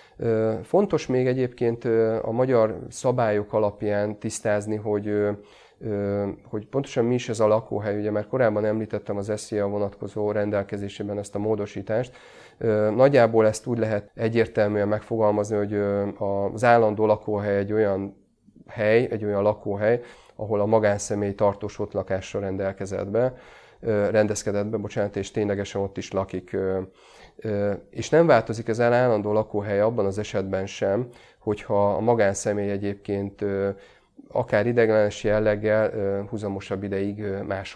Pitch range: 100-110 Hz